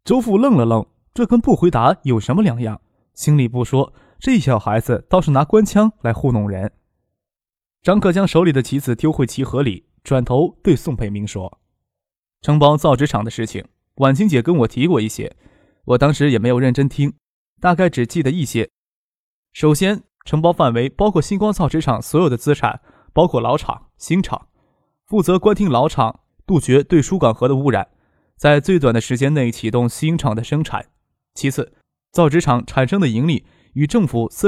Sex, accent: male, native